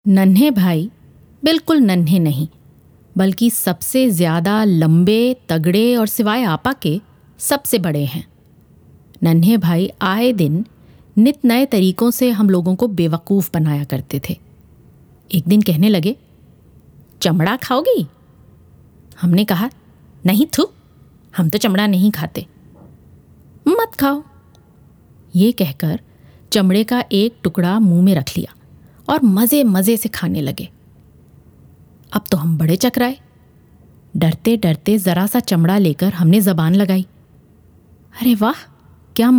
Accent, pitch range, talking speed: native, 175-240 Hz, 125 wpm